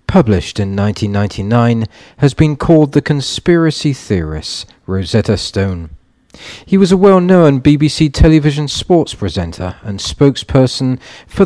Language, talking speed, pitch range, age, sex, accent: Italian, 115 wpm, 95-140 Hz, 40-59, male, British